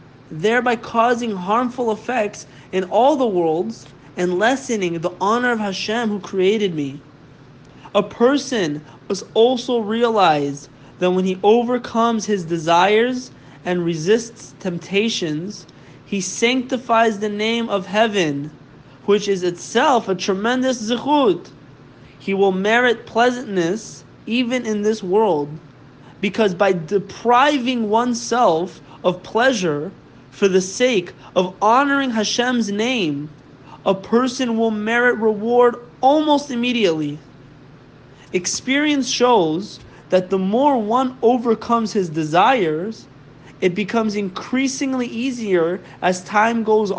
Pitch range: 170-230 Hz